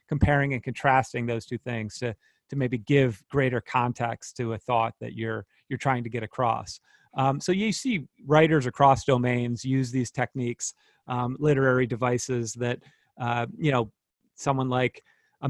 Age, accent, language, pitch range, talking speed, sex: 30-49, American, English, 125-145 Hz, 165 wpm, male